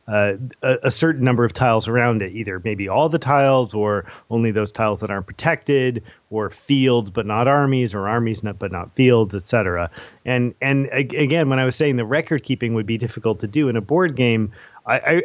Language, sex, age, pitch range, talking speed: English, male, 30-49, 110-135 Hz, 210 wpm